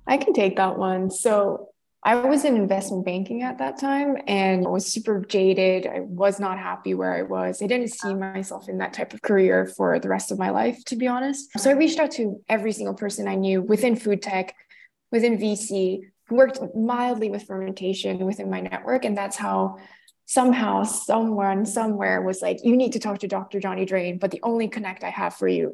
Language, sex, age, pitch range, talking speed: English, female, 20-39, 190-235 Hz, 210 wpm